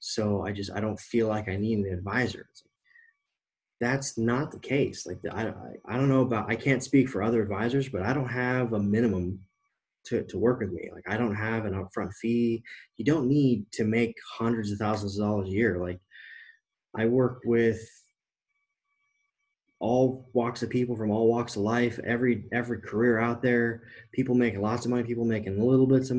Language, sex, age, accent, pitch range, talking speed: English, male, 20-39, American, 105-125 Hz, 200 wpm